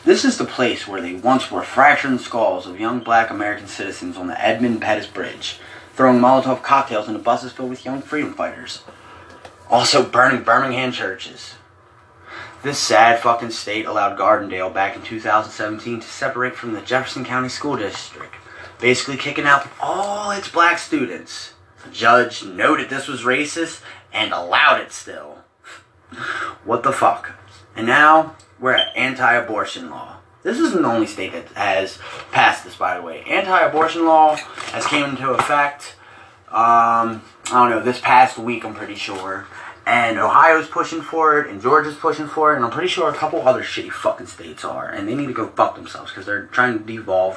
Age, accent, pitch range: 30-49, American, 110-150 Hz